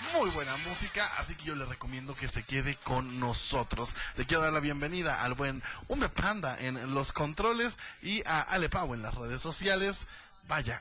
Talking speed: 190 wpm